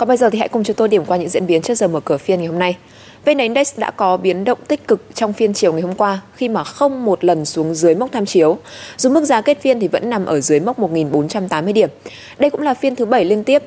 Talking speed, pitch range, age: 290 wpm, 175-245 Hz, 20-39